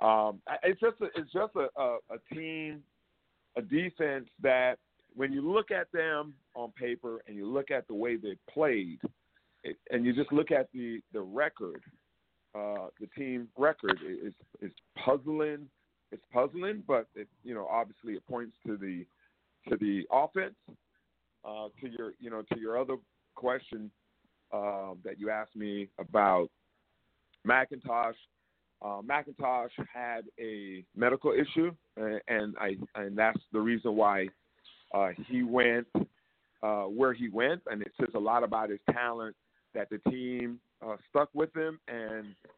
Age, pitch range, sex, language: 50-69, 105-135 Hz, male, English